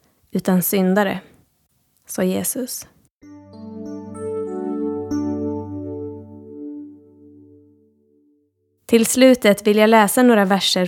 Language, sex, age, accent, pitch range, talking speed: Swedish, female, 20-39, native, 180-230 Hz, 60 wpm